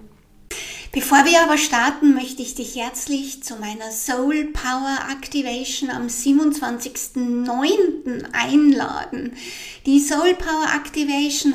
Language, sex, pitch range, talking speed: German, female, 245-300 Hz, 105 wpm